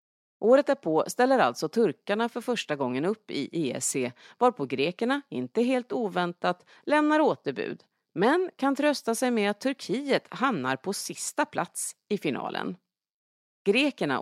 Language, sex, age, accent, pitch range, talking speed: English, female, 40-59, Swedish, 145-235 Hz, 140 wpm